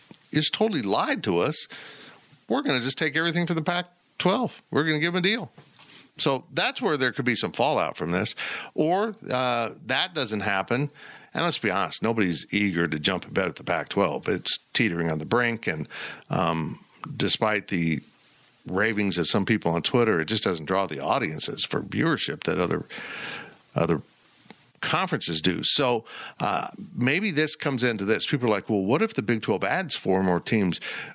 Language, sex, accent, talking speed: English, male, American, 185 wpm